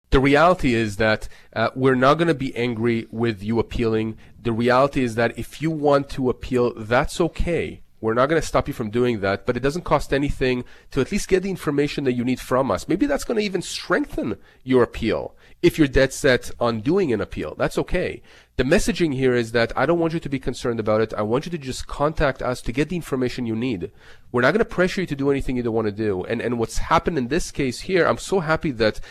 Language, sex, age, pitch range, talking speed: English, male, 30-49, 115-150 Hz, 245 wpm